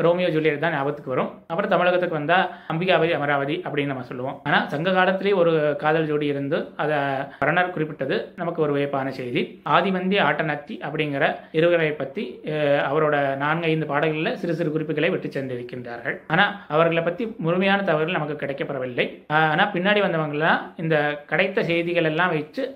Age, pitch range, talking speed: 20-39, 145-180 Hz, 140 wpm